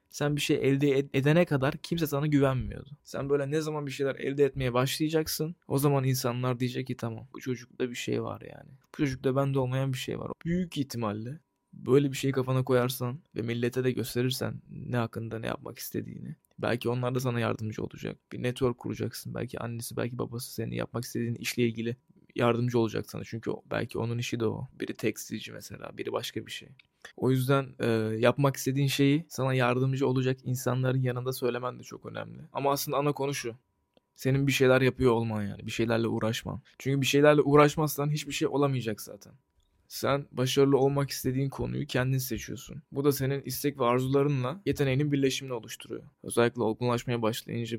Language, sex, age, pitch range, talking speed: Turkish, male, 20-39, 120-145 Hz, 180 wpm